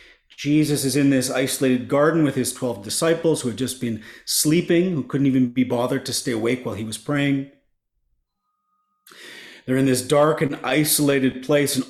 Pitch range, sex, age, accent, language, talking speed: 125-165 Hz, male, 40-59, American, English, 175 wpm